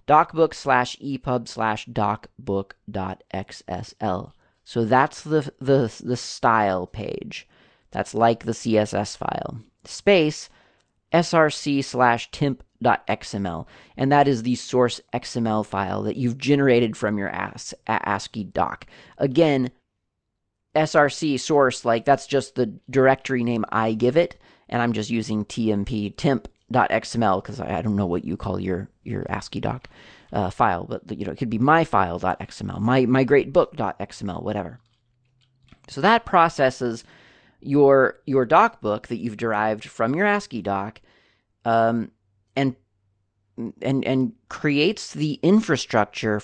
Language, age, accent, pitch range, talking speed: English, 40-59, American, 105-140 Hz, 135 wpm